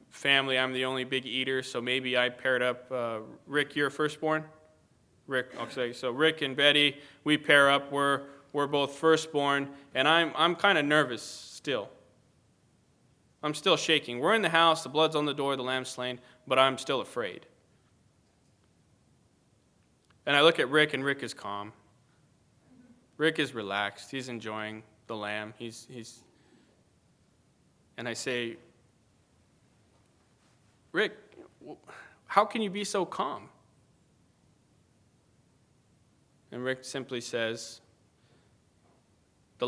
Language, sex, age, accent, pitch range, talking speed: English, male, 20-39, American, 120-150 Hz, 135 wpm